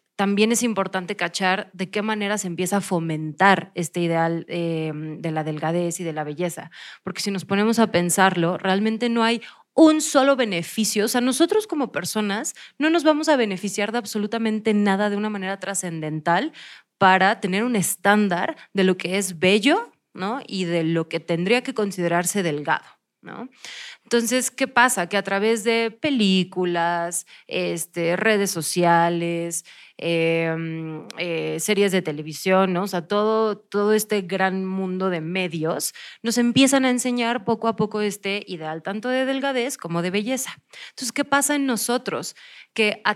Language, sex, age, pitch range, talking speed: Spanish, female, 30-49, 175-240 Hz, 165 wpm